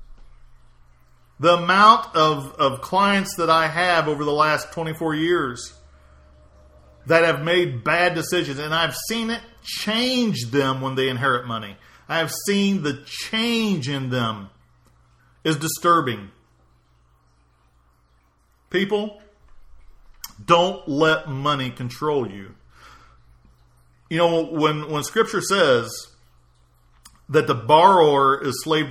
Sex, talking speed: male, 110 wpm